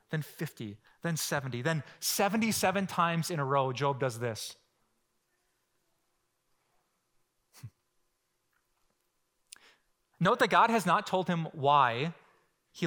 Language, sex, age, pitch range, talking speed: English, male, 30-49, 140-175 Hz, 105 wpm